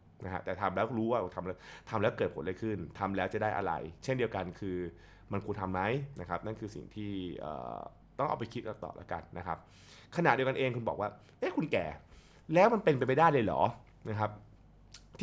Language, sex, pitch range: Thai, male, 95-135 Hz